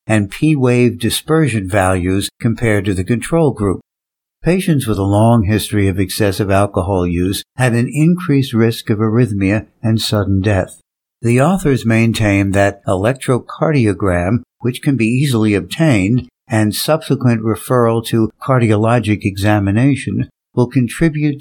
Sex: male